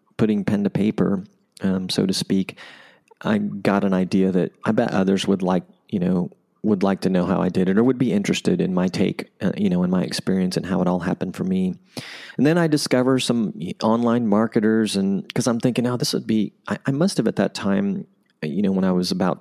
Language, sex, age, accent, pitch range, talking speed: English, male, 30-49, American, 95-145 Hz, 230 wpm